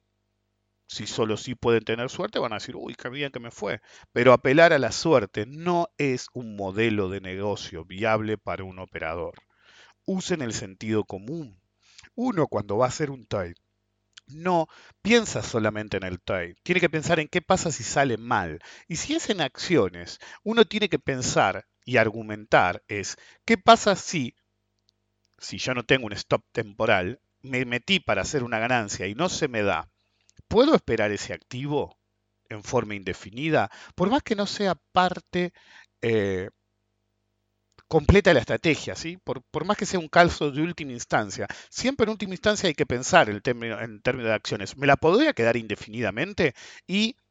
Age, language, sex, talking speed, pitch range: 50-69, English, male, 170 wpm, 105-165 Hz